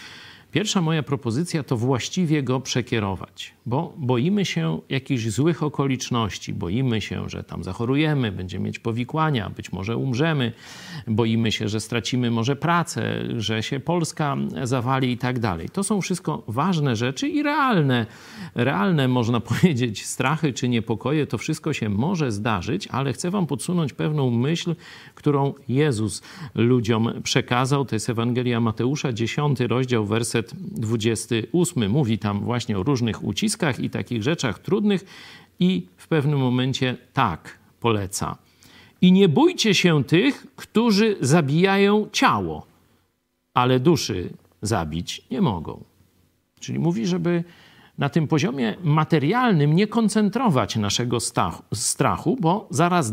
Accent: native